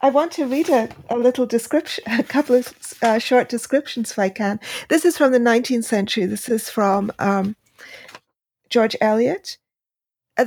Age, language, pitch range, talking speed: 40-59, English, 220-255 Hz, 170 wpm